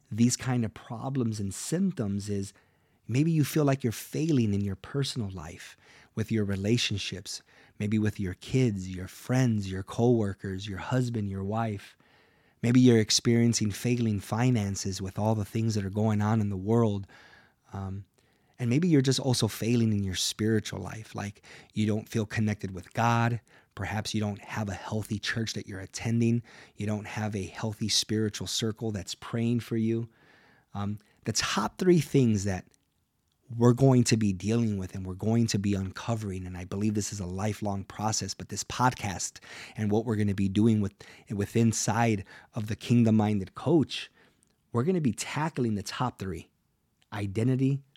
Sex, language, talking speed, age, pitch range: male, English, 175 wpm, 30-49, 100-120 Hz